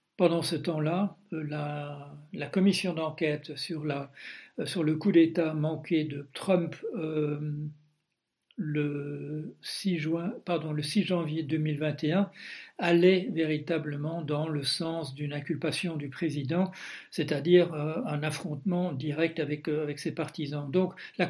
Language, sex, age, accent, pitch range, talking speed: French, male, 60-79, French, 150-175 Hz, 125 wpm